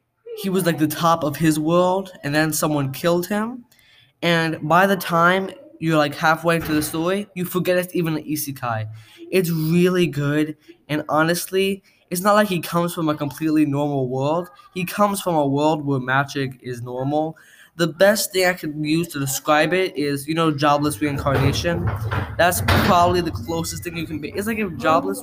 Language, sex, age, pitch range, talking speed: English, male, 10-29, 150-180 Hz, 190 wpm